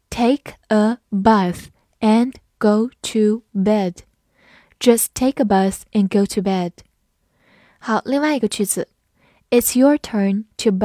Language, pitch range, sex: Chinese, 200-245 Hz, female